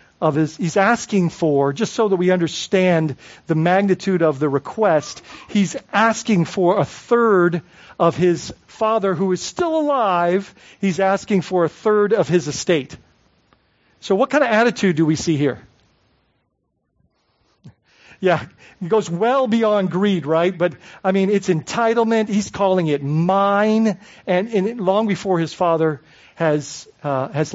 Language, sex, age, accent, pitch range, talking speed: English, male, 50-69, American, 155-200 Hz, 150 wpm